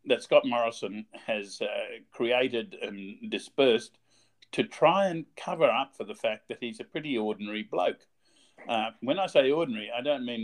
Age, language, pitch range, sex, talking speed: 50-69, English, 110-180 Hz, male, 170 wpm